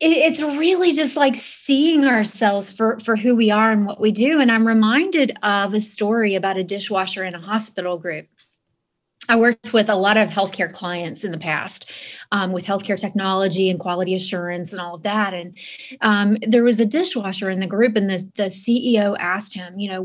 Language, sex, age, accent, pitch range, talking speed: English, female, 30-49, American, 190-230 Hz, 200 wpm